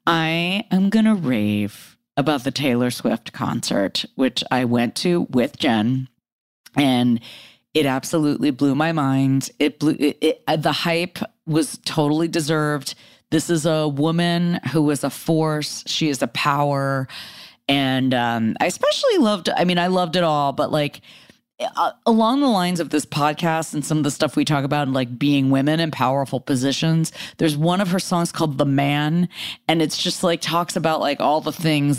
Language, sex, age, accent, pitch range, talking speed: English, female, 30-49, American, 135-170 Hz, 180 wpm